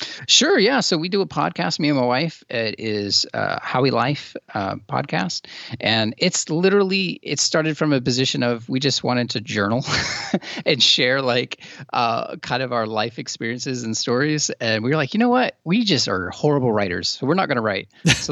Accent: American